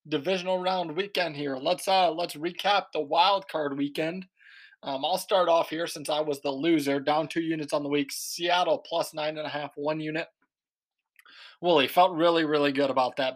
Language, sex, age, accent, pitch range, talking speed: English, male, 20-39, American, 140-170 Hz, 195 wpm